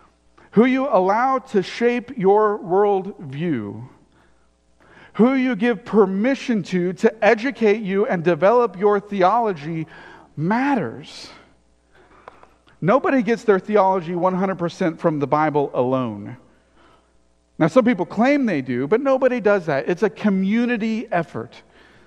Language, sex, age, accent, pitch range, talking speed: English, male, 40-59, American, 150-215 Hz, 115 wpm